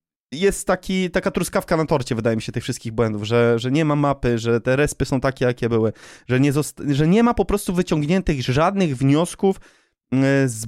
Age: 20-39